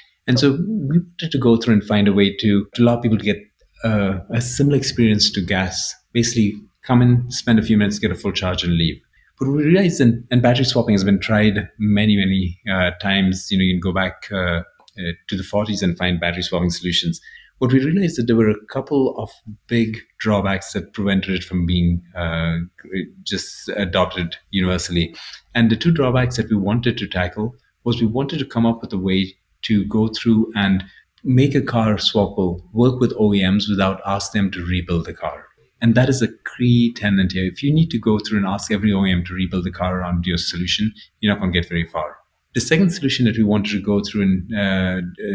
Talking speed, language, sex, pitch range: 215 wpm, English, male, 95-115 Hz